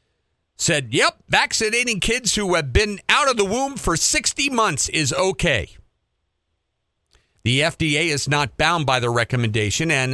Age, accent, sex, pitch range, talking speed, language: 50-69, American, male, 110-155 Hz, 150 wpm, English